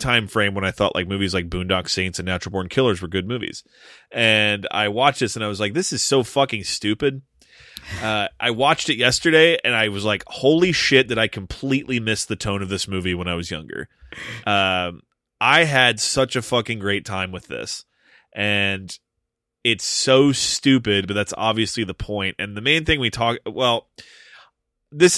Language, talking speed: English, 195 wpm